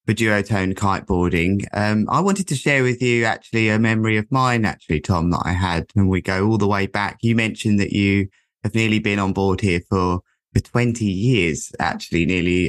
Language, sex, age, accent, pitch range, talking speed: English, male, 20-39, British, 95-115 Hz, 205 wpm